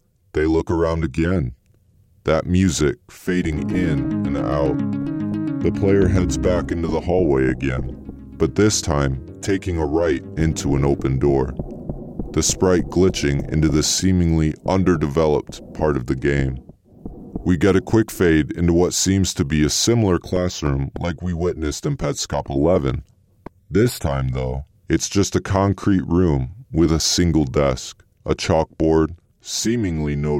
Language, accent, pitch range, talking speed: English, American, 75-95 Hz, 145 wpm